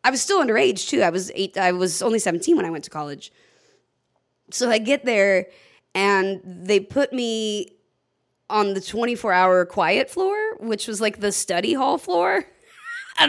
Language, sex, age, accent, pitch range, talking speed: English, female, 20-39, American, 185-235 Hz, 170 wpm